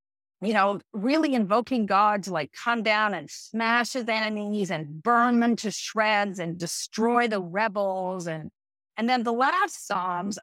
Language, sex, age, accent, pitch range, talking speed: English, female, 40-59, American, 180-240 Hz, 160 wpm